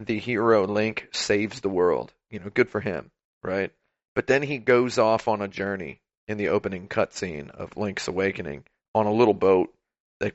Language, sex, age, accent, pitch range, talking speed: English, male, 40-59, American, 100-115 Hz, 185 wpm